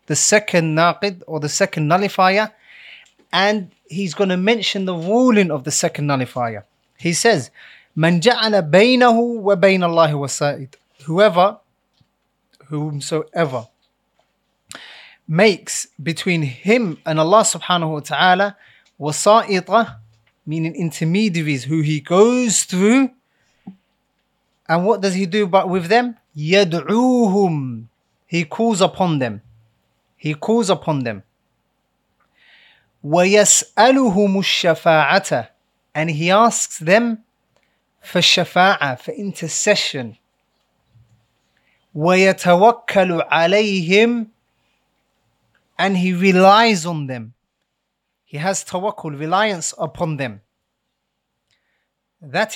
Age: 30-49